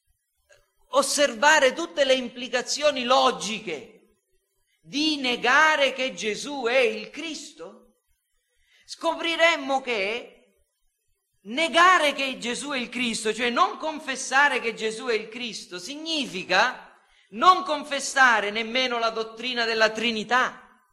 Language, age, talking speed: Italian, 40-59, 105 wpm